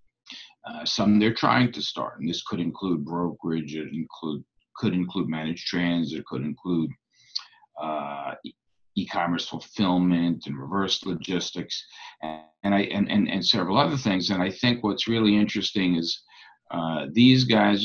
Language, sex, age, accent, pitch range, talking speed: English, male, 60-79, American, 85-105 Hz, 155 wpm